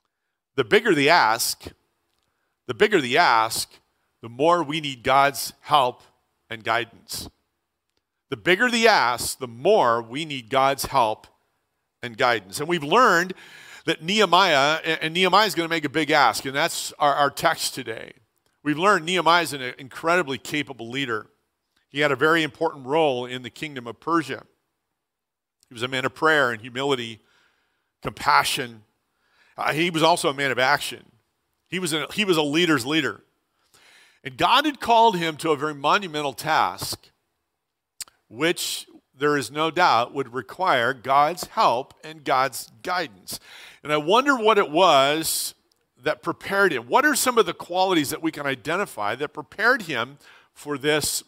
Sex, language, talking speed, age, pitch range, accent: male, English, 165 wpm, 50-69, 135-170 Hz, American